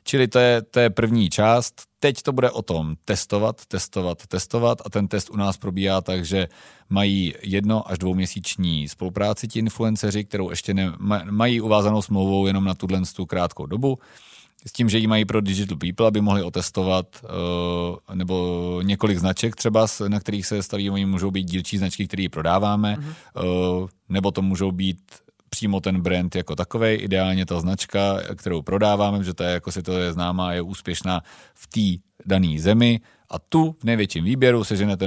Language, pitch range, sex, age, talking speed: Czech, 90-105 Hz, male, 40-59, 170 wpm